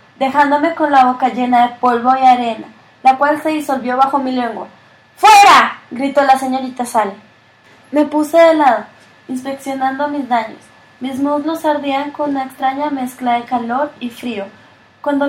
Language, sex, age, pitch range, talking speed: Spanish, female, 20-39, 240-285 Hz, 155 wpm